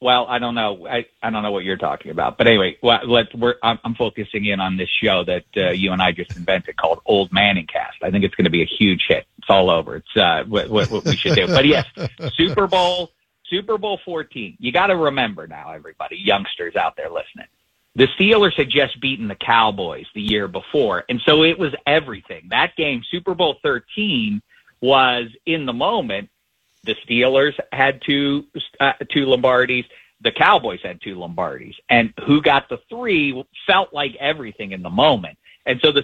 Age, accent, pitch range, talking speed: 40-59, American, 110-145 Hz, 200 wpm